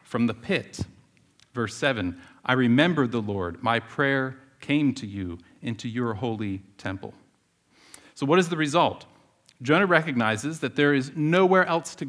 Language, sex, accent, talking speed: English, male, American, 155 wpm